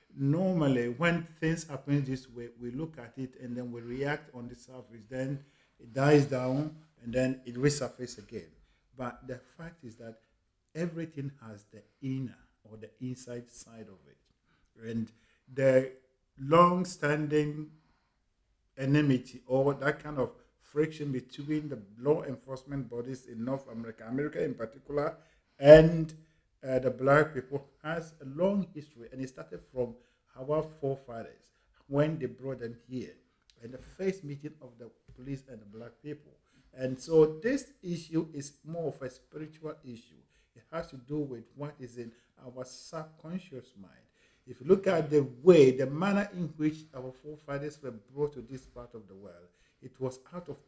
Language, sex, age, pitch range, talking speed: English, male, 50-69, 125-155 Hz, 160 wpm